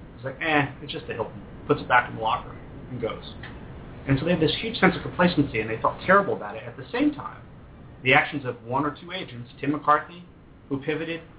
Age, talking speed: 40-59, 235 wpm